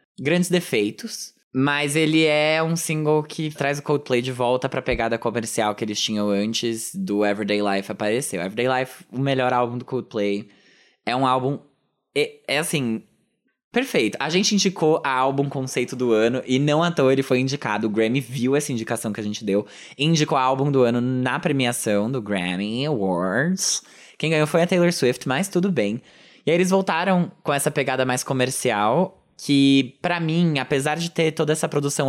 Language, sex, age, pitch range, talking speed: Portuguese, male, 20-39, 115-155 Hz, 185 wpm